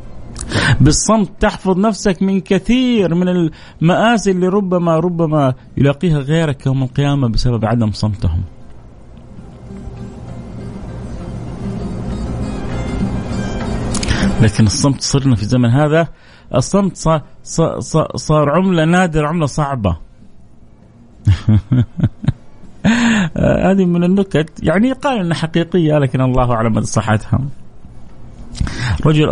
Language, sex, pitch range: Arabic, male, 110-165 Hz